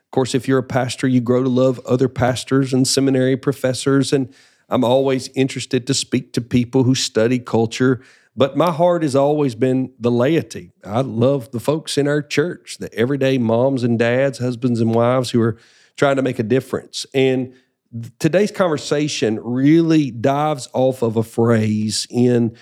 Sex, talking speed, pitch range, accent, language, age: male, 175 wpm, 120-145 Hz, American, English, 50-69